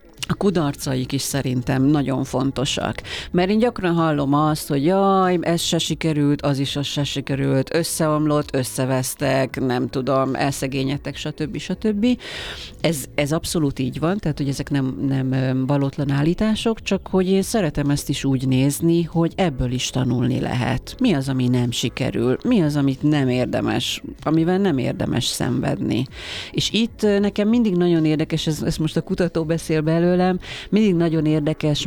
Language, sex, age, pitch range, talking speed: Hungarian, female, 40-59, 135-170 Hz, 155 wpm